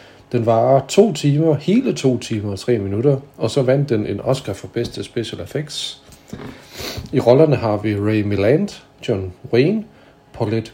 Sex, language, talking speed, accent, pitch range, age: male, Danish, 160 wpm, native, 110-140 Hz, 40-59